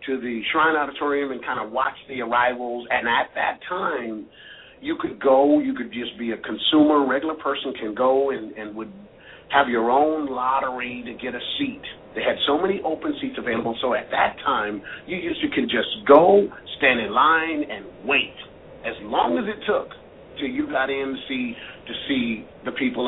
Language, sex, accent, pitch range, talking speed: English, male, American, 125-190 Hz, 200 wpm